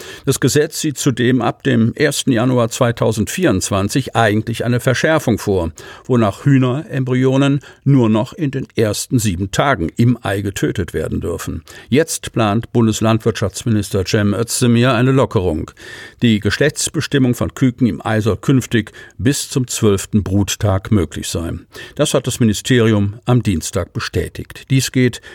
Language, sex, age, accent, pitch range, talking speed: German, male, 50-69, German, 105-130 Hz, 135 wpm